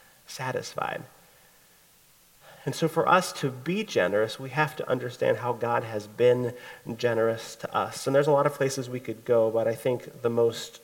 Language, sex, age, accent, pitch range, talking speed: English, male, 30-49, American, 115-160 Hz, 185 wpm